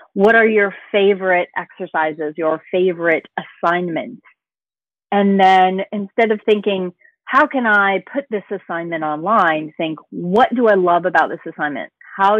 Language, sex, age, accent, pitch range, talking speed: English, female, 40-59, American, 170-215 Hz, 140 wpm